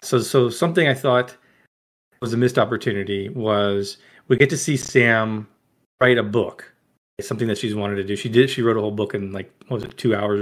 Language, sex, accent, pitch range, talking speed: English, male, American, 105-135 Hz, 225 wpm